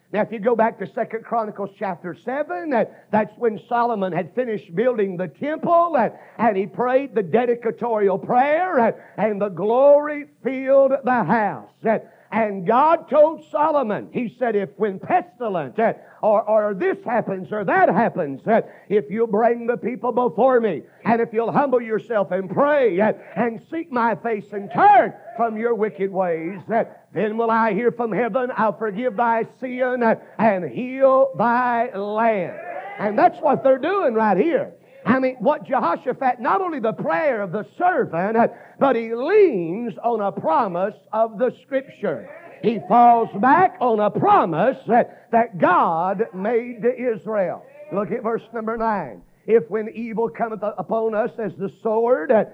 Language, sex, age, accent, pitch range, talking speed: English, male, 50-69, American, 210-255 Hz, 155 wpm